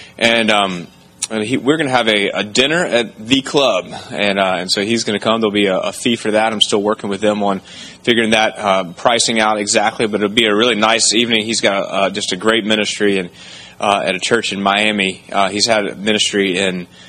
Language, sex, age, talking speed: English, male, 20-39, 245 wpm